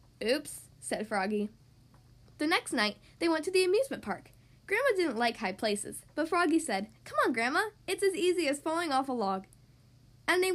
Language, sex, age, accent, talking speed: English, female, 10-29, American, 190 wpm